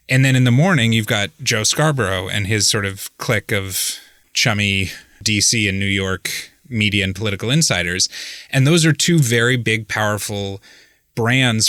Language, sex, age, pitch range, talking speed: English, male, 20-39, 95-125 Hz, 165 wpm